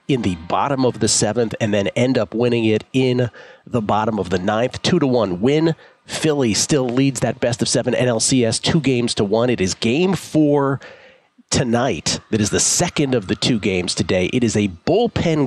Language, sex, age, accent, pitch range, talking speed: English, male, 40-59, American, 105-130 Hz, 200 wpm